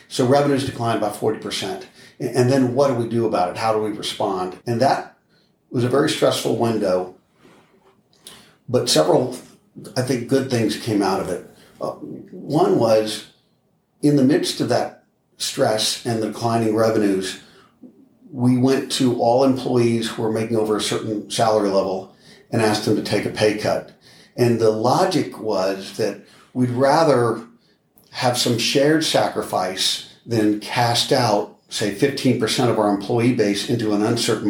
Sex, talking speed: male, 155 wpm